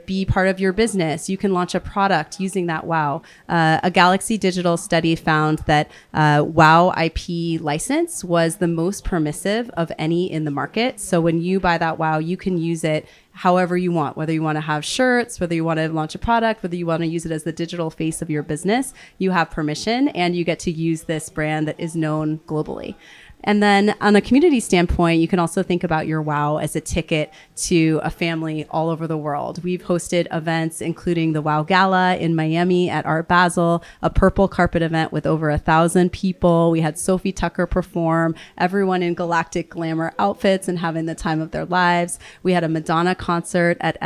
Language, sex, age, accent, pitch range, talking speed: English, female, 30-49, American, 160-185 Hz, 210 wpm